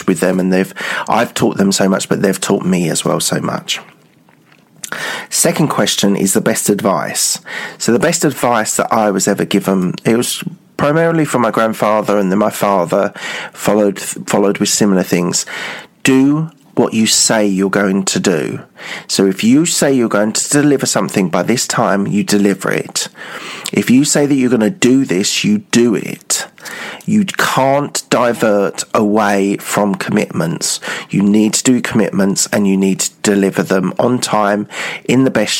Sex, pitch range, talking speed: male, 100-125 Hz, 175 wpm